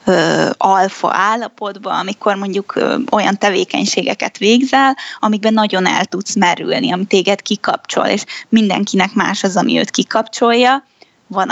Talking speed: 120 wpm